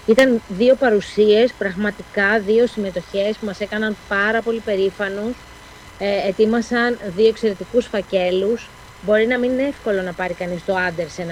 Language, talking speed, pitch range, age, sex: Greek, 140 wpm, 185-220 Hz, 30-49, female